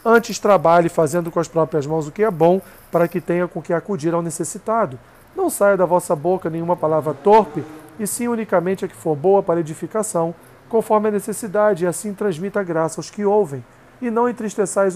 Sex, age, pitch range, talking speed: male, 40-59, 160-205 Hz, 195 wpm